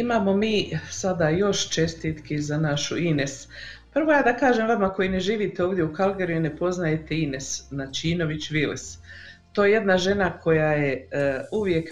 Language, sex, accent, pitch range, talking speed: Croatian, female, native, 155-190 Hz, 170 wpm